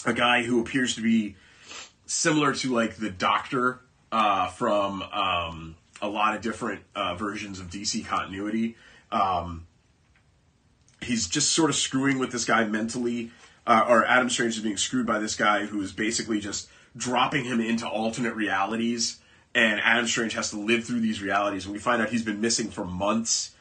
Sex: male